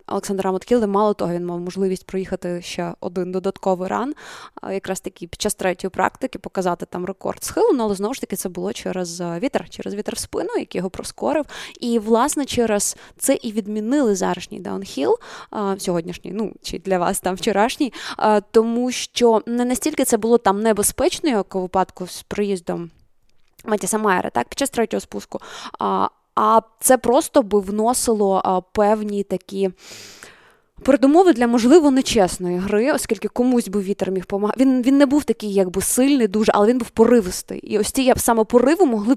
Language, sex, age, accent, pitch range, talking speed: Ukrainian, female, 20-39, native, 195-245 Hz, 170 wpm